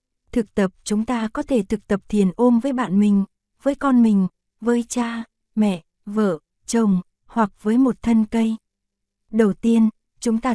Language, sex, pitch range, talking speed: Vietnamese, female, 195-235 Hz, 170 wpm